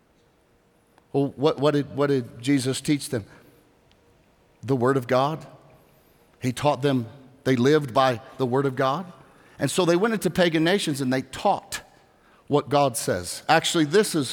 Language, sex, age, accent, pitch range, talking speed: English, male, 50-69, American, 130-175 Hz, 160 wpm